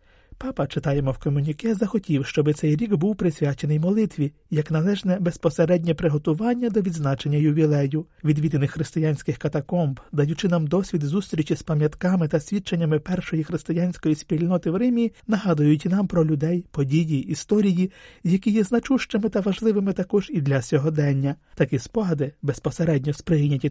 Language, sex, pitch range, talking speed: Ukrainian, male, 150-190 Hz, 135 wpm